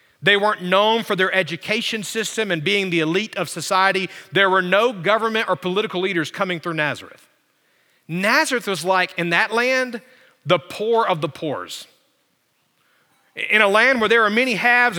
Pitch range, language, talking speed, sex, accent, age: 160-215 Hz, English, 170 wpm, male, American, 40-59